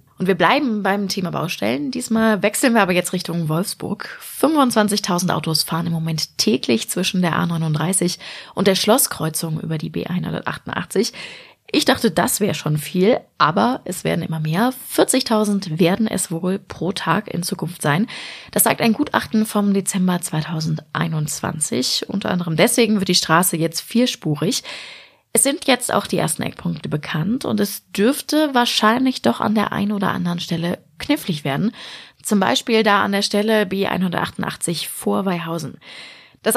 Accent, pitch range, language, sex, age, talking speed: German, 170-225 Hz, German, female, 20-39, 155 wpm